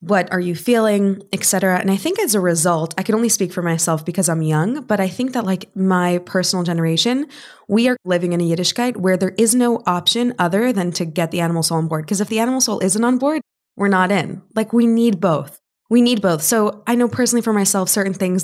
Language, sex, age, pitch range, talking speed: English, female, 20-39, 175-215 Hz, 245 wpm